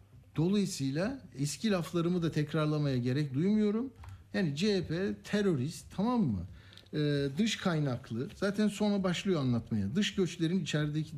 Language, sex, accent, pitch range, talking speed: Turkish, male, native, 135-175 Hz, 115 wpm